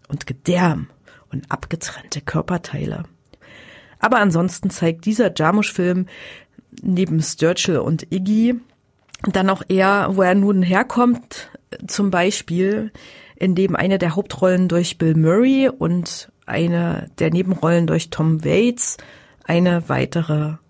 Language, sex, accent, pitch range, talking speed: German, female, German, 170-215 Hz, 115 wpm